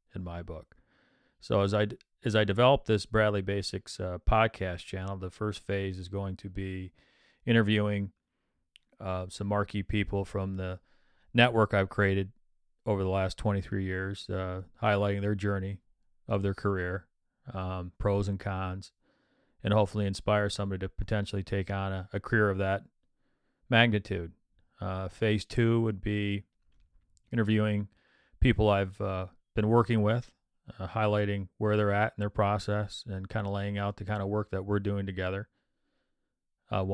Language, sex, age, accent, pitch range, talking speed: English, male, 40-59, American, 95-105 Hz, 155 wpm